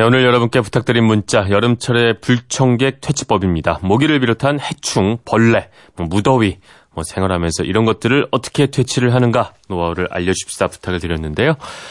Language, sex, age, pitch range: Korean, male, 30-49, 90-130 Hz